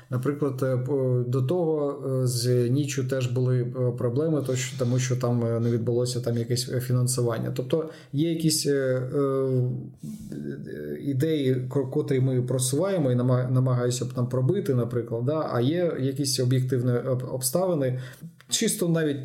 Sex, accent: male, native